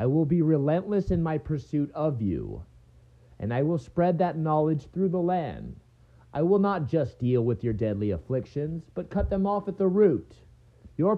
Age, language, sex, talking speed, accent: 40-59, English, male, 190 wpm, American